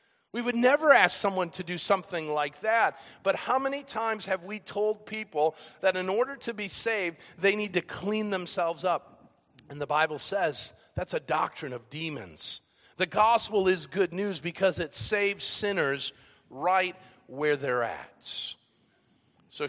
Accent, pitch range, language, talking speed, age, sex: American, 145-210 Hz, English, 160 wpm, 50-69, male